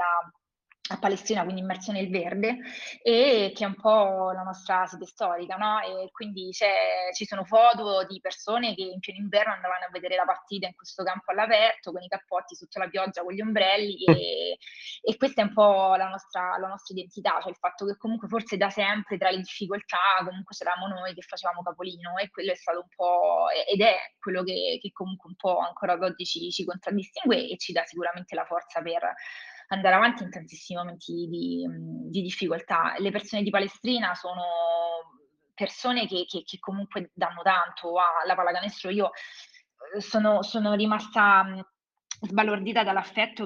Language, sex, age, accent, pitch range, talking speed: Italian, female, 20-39, native, 180-210 Hz, 180 wpm